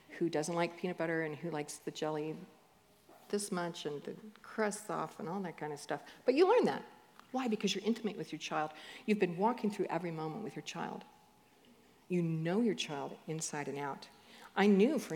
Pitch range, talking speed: 160-215 Hz, 205 wpm